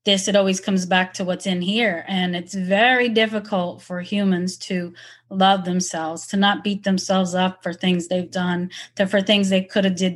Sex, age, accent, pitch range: female, 30-49, American, 185-225 Hz